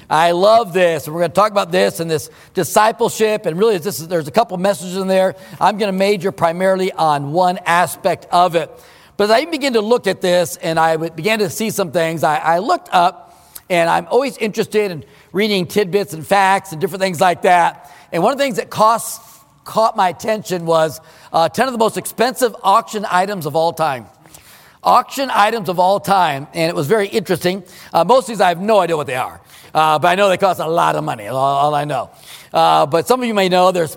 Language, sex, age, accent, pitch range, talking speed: English, male, 40-59, American, 170-215 Hz, 230 wpm